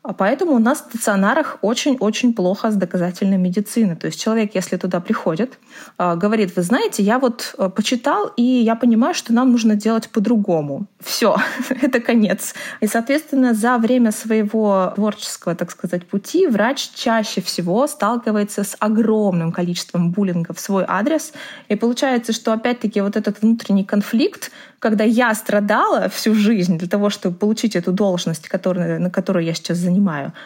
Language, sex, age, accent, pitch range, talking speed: Russian, female, 20-39, native, 195-235 Hz, 155 wpm